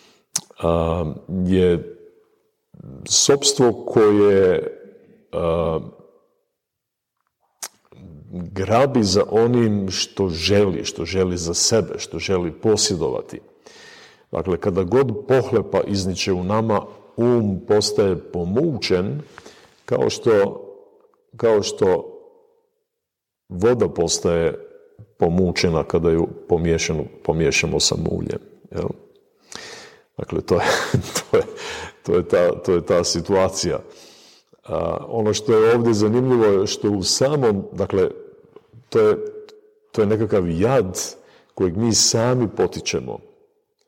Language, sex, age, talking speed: Croatian, male, 50-69, 95 wpm